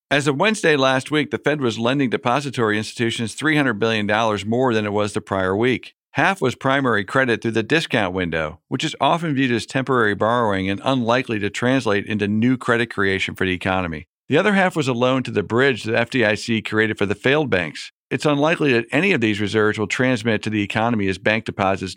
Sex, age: male, 50-69